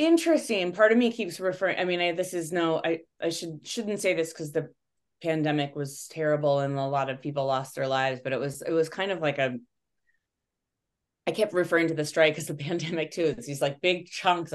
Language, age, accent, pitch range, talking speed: English, 20-39, American, 145-175 Hz, 225 wpm